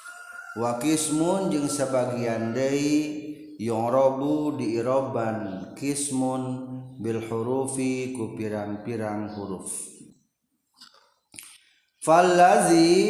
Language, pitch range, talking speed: Indonesian, 120-150 Hz, 55 wpm